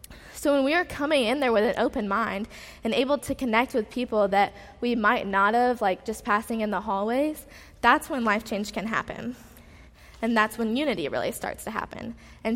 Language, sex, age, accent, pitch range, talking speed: English, female, 20-39, American, 205-245 Hz, 205 wpm